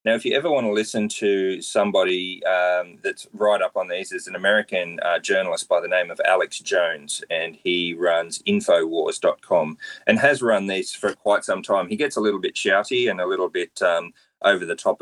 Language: English